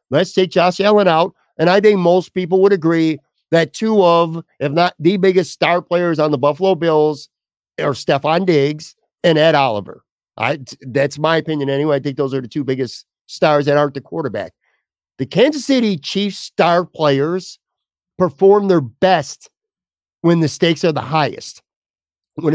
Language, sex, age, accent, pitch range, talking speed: English, male, 50-69, American, 150-180 Hz, 170 wpm